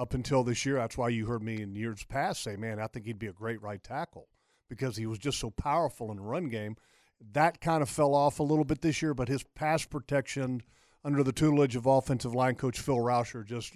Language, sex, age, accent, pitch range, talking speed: English, male, 50-69, American, 120-140 Hz, 245 wpm